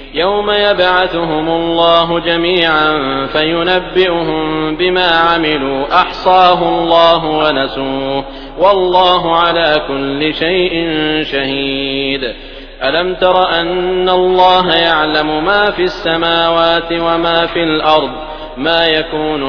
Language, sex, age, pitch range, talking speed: English, male, 30-49, 155-180 Hz, 85 wpm